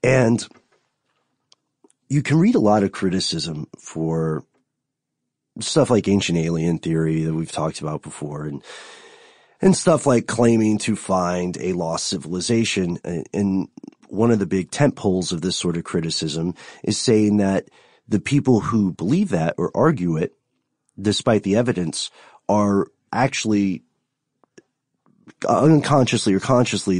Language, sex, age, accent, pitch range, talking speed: English, male, 30-49, American, 85-120 Hz, 135 wpm